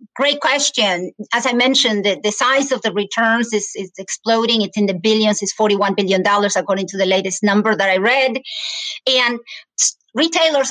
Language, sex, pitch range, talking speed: English, female, 205-260 Hz, 185 wpm